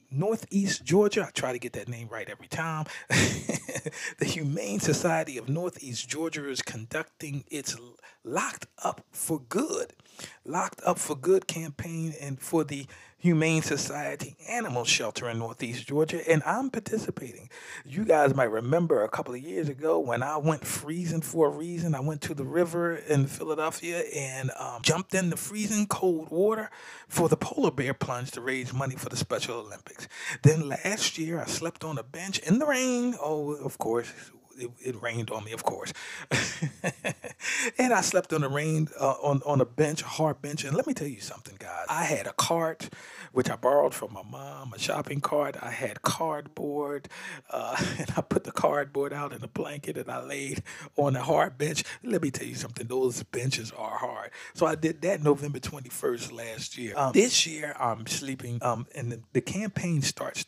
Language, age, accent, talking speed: English, 40-59, American, 190 wpm